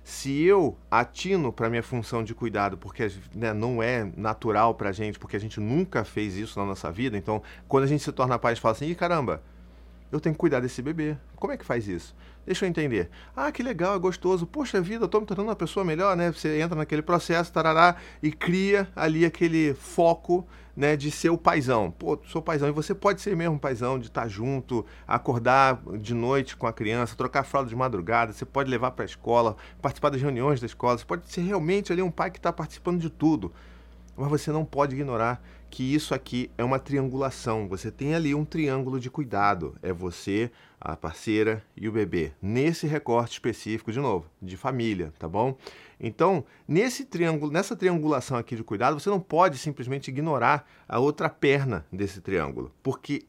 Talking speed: 205 wpm